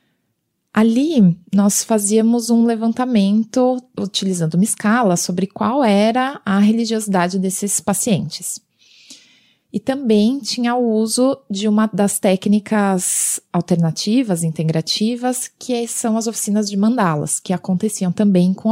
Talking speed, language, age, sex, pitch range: 115 wpm, Portuguese, 20-39, female, 185-230 Hz